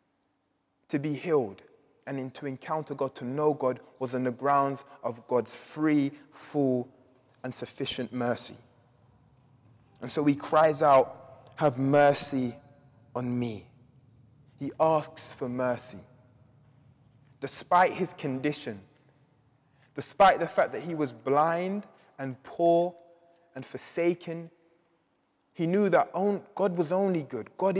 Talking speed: 120 wpm